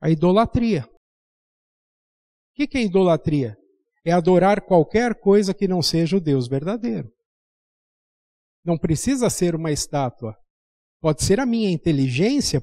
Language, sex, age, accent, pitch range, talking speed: Portuguese, male, 50-69, Brazilian, 170-235 Hz, 125 wpm